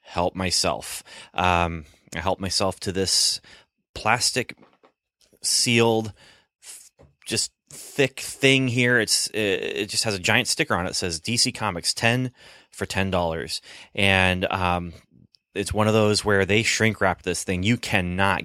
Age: 30-49